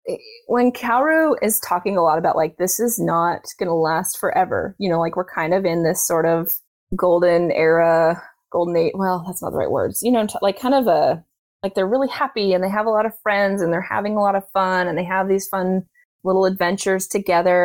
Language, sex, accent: English, female, American